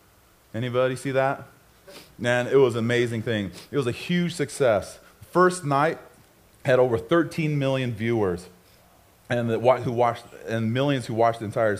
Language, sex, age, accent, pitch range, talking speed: English, male, 30-49, American, 105-135 Hz, 160 wpm